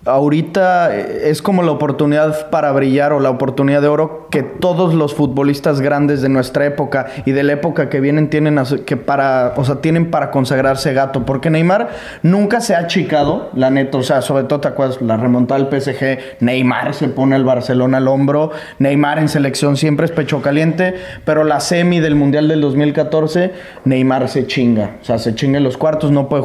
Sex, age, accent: male, 20-39, Mexican